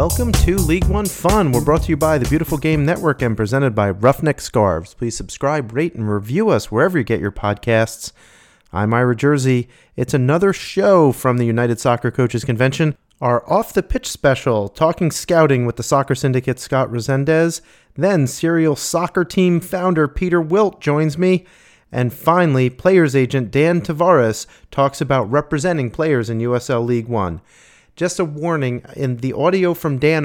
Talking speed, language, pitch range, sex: 165 wpm, English, 115-155 Hz, male